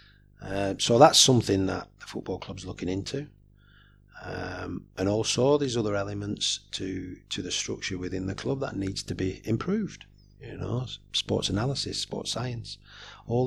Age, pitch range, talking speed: 40-59, 100-125 Hz, 155 wpm